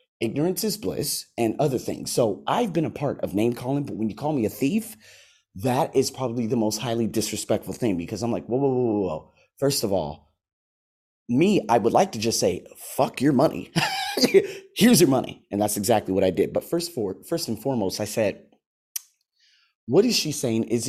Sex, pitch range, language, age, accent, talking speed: male, 105-140 Hz, English, 30-49, American, 205 wpm